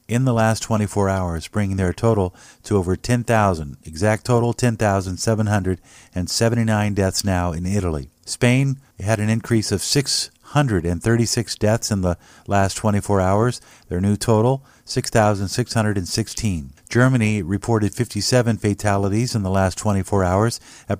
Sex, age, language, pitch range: male, 50-69, English, 95-115 Hz